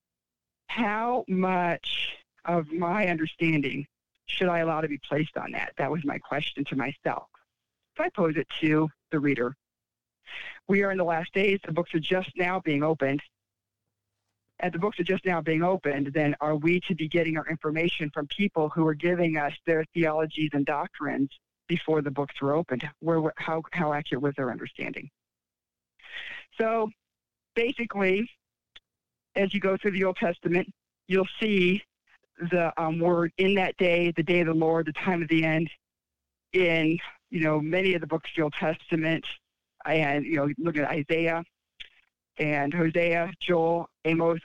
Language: English